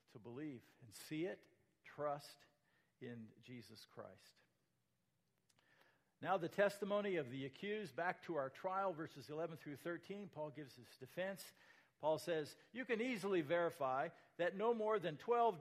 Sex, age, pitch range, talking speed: male, 50-69, 165-225 Hz, 145 wpm